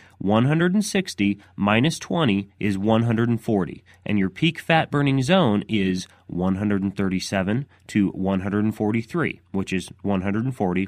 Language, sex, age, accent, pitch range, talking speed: English, male, 30-49, American, 95-130 Hz, 100 wpm